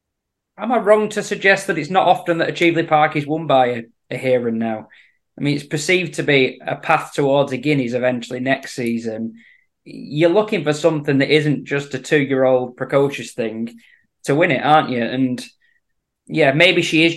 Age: 20-39